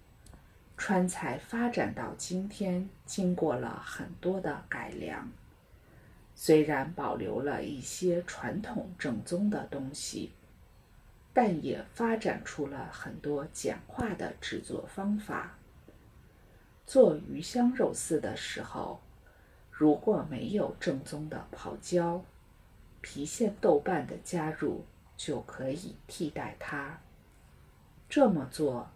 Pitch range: 135-190 Hz